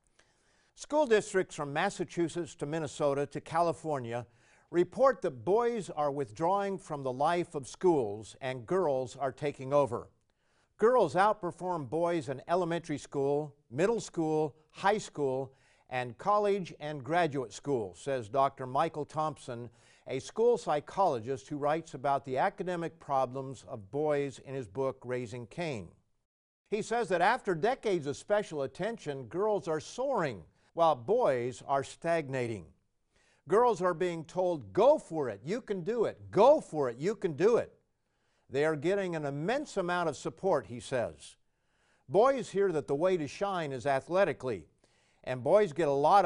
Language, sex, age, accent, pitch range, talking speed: English, male, 50-69, American, 135-190 Hz, 150 wpm